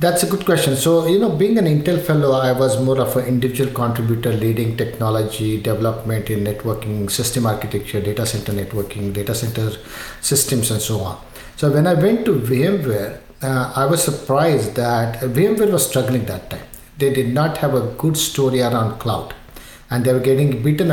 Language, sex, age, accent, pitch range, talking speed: English, male, 50-69, Indian, 115-145 Hz, 185 wpm